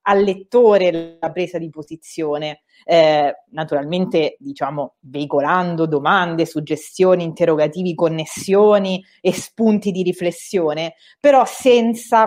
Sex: female